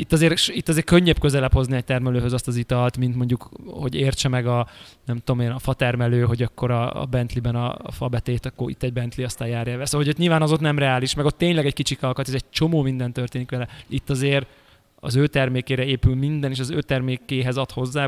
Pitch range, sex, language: 120-140 Hz, male, Hungarian